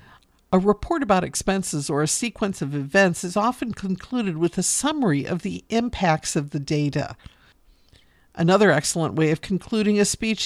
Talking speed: 160 wpm